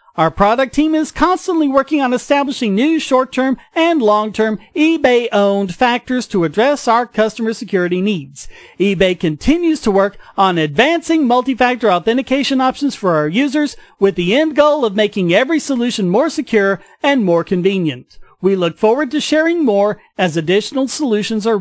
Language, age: English, 40-59